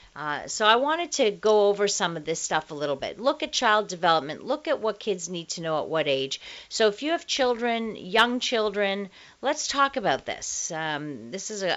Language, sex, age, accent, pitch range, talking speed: English, female, 50-69, American, 170-250 Hz, 220 wpm